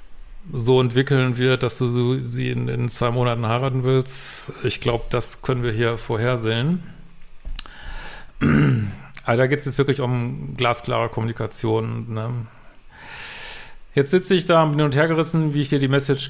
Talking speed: 160 wpm